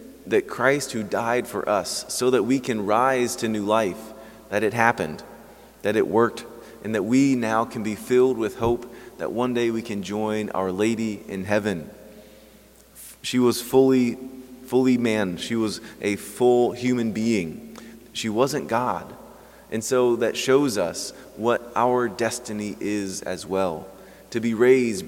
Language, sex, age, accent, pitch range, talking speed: English, male, 30-49, American, 105-125 Hz, 160 wpm